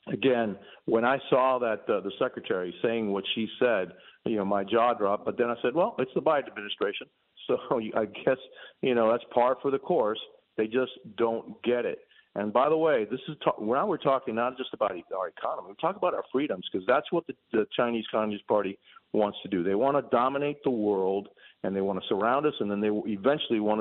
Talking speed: 225 wpm